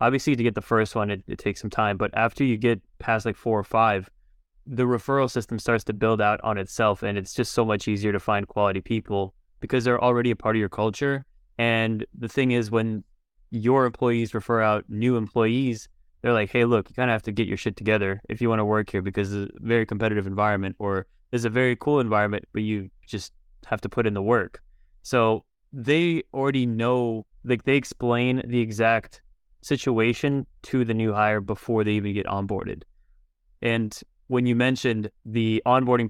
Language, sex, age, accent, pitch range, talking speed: English, male, 20-39, American, 105-120 Hz, 205 wpm